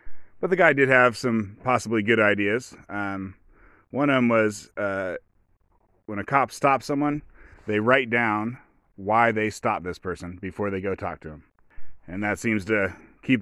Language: English